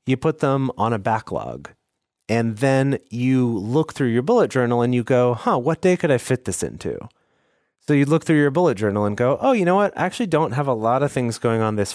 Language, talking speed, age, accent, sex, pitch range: English, 245 wpm, 30-49, American, male, 110-150 Hz